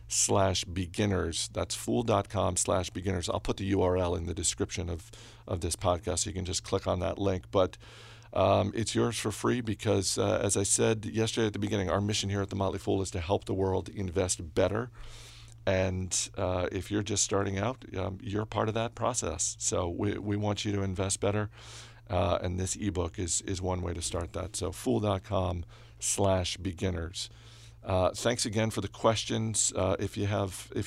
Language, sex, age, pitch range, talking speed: English, male, 50-69, 95-115 Hz, 195 wpm